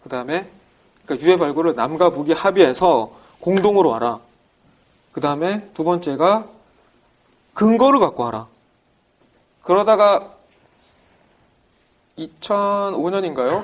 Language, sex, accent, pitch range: Korean, male, native, 130-175 Hz